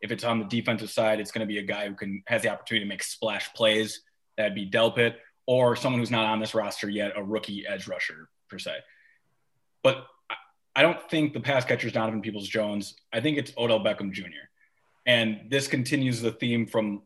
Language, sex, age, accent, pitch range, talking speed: English, male, 20-39, American, 105-125 Hz, 215 wpm